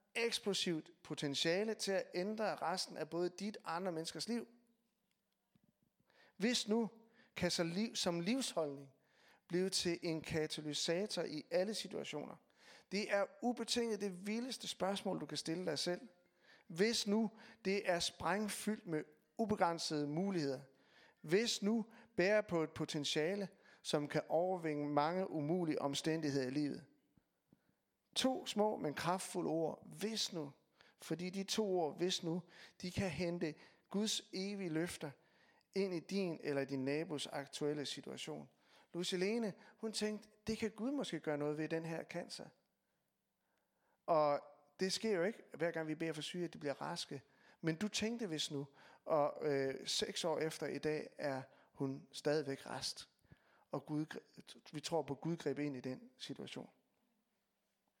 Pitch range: 155-210 Hz